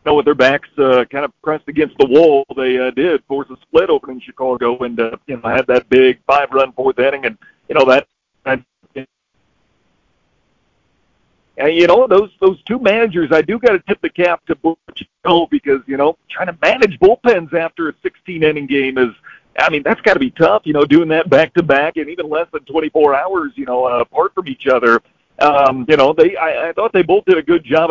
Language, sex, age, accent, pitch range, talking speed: English, male, 50-69, American, 135-190 Hz, 230 wpm